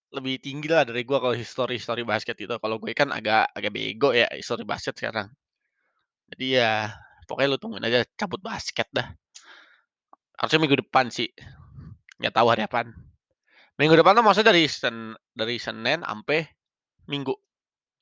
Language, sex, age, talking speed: Indonesian, male, 20-39, 150 wpm